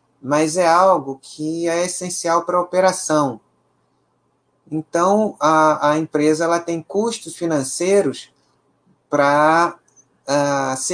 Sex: male